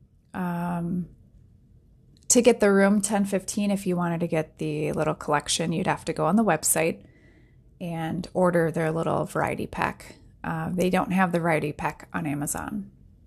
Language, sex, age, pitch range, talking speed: English, female, 20-39, 165-210 Hz, 165 wpm